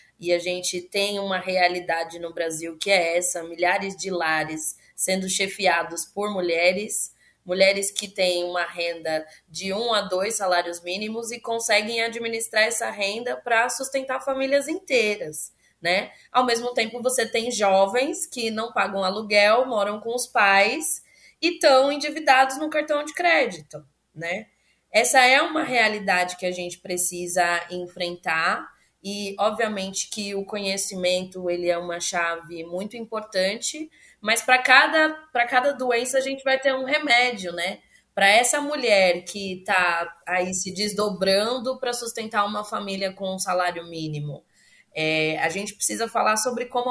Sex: female